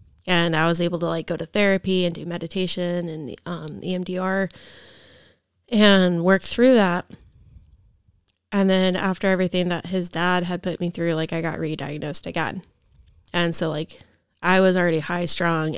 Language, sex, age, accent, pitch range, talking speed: English, female, 20-39, American, 160-195 Hz, 165 wpm